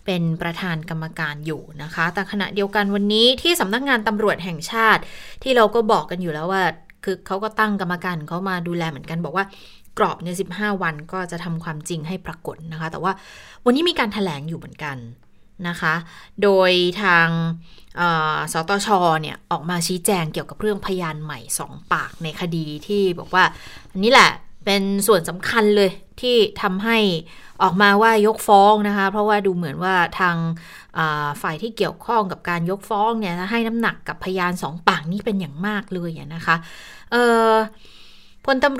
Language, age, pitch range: Thai, 20-39, 165-210 Hz